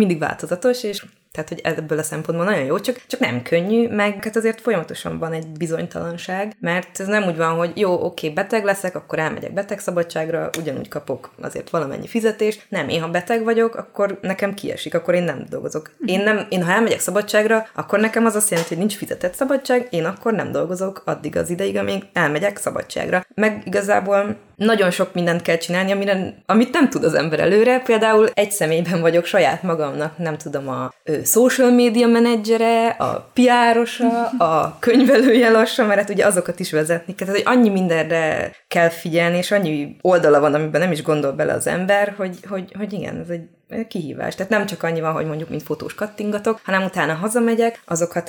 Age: 20-39